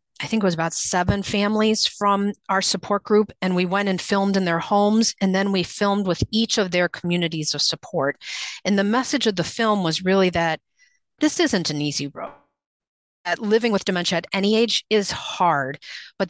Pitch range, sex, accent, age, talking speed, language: 160-200 Hz, female, American, 40-59, 200 wpm, English